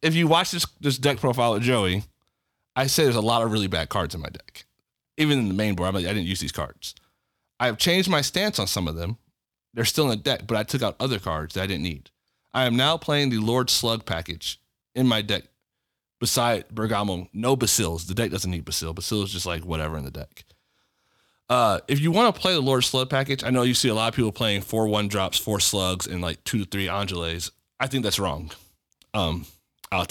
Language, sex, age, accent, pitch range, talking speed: English, male, 30-49, American, 95-130 Hz, 235 wpm